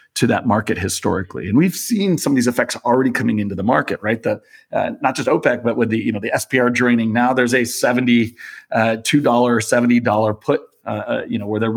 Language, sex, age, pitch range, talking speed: English, male, 30-49, 110-125 Hz, 235 wpm